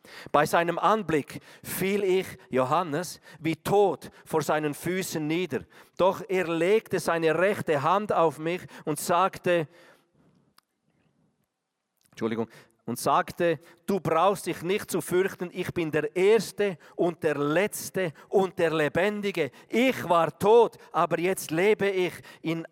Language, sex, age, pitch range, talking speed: German, male, 40-59, 145-185 Hz, 130 wpm